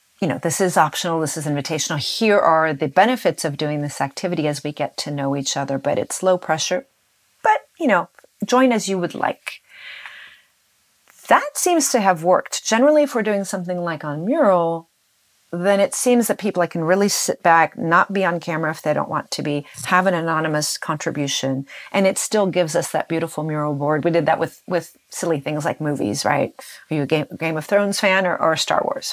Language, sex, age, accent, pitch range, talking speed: English, female, 40-59, American, 155-195 Hz, 210 wpm